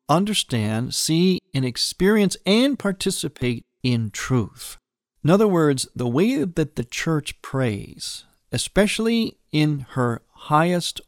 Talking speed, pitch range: 115 wpm, 115-160 Hz